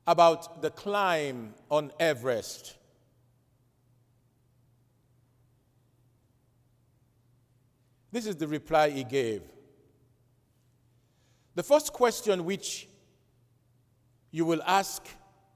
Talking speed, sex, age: 70 wpm, male, 50-69